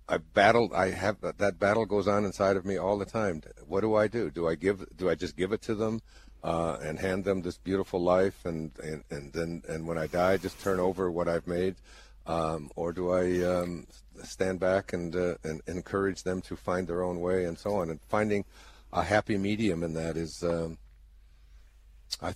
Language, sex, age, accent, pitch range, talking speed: English, male, 60-79, American, 75-95 Hz, 215 wpm